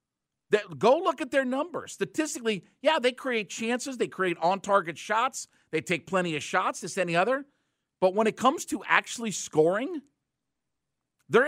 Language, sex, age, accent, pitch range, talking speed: English, male, 50-69, American, 155-225 Hz, 160 wpm